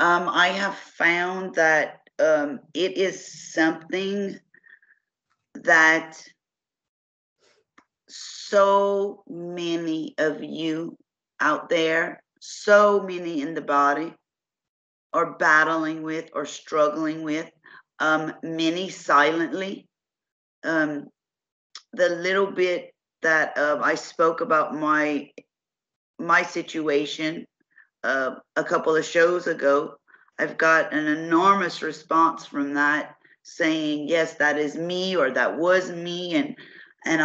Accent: American